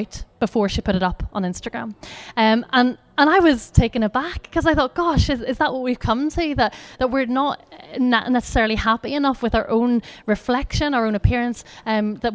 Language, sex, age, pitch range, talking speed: English, female, 30-49, 210-270 Hz, 205 wpm